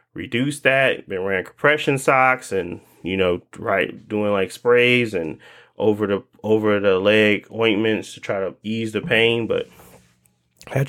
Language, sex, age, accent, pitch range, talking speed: English, male, 20-39, American, 100-130 Hz, 155 wpm